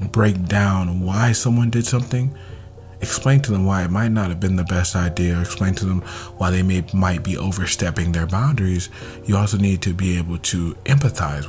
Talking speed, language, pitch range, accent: 195 wpm, English, 90-110 Hz, American